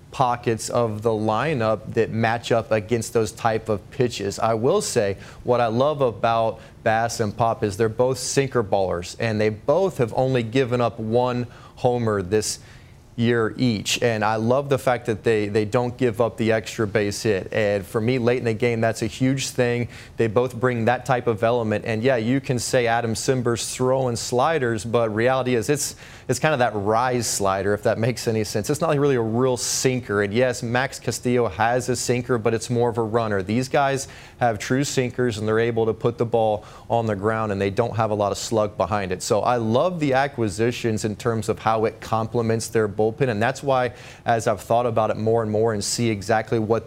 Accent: American